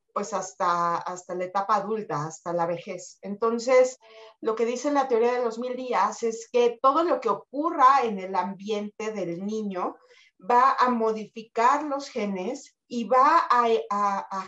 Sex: female